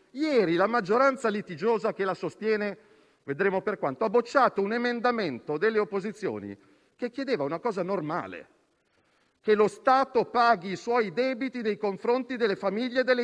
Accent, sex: native, male